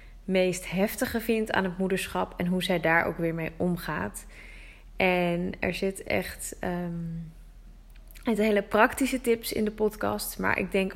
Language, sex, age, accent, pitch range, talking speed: Dutch, female, 20-39, Dutch, 180-210 Hz, 160 wpm